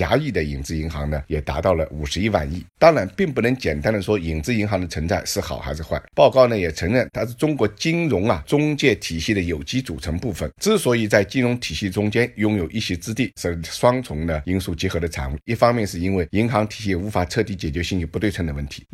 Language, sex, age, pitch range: Chinese, male, 50-69, 80-110 Hz